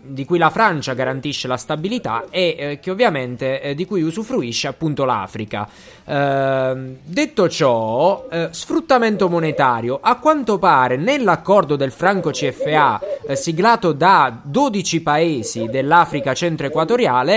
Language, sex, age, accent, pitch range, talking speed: Italian, male, 20-39, native, 135-205 Hz, 125 wpm